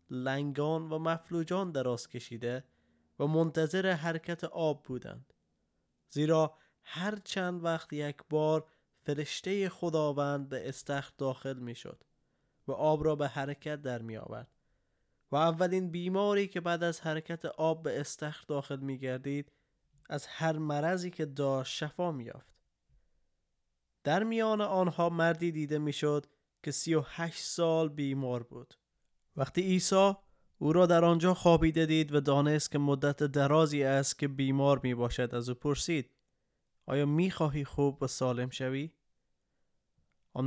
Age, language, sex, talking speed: 20-39, Persian, male, 140 wpm